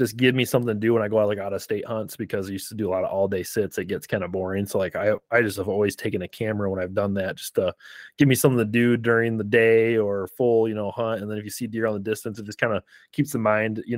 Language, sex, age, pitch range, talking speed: English, male, 20-39, 105-120 Hz, 330 wpm